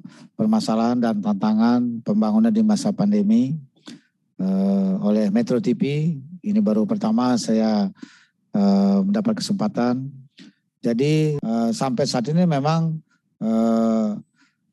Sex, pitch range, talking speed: male, 125-200 Hz, 100 wpm